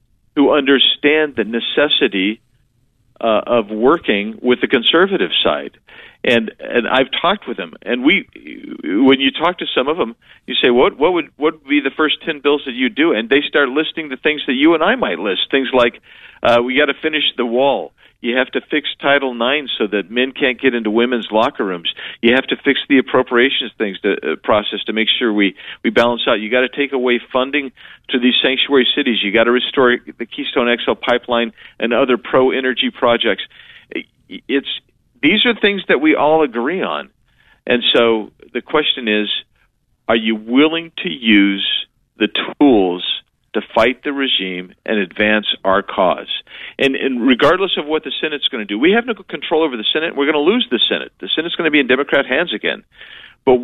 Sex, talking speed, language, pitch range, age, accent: male, 200 wpm, English, 120-155 Hz, 50-69, American